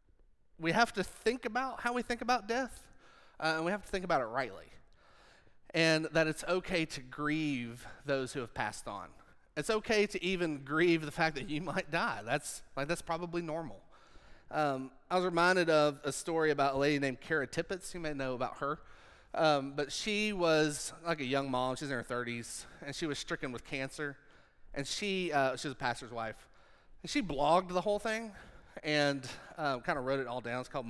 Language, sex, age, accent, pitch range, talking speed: English, male, 30-49, American, 135-175 Hz, 205 wpm